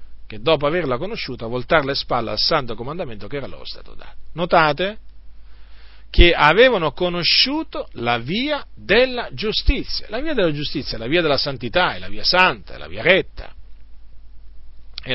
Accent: native